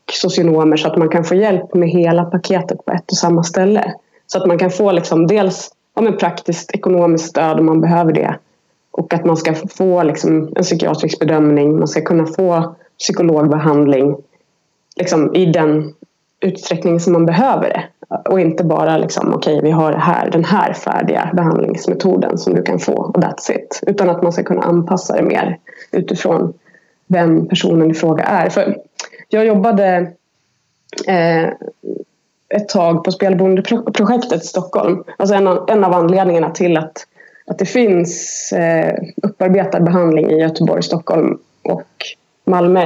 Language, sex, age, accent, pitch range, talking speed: Swedish, female, 20-39, native, 165-190 Hz, 155 wpm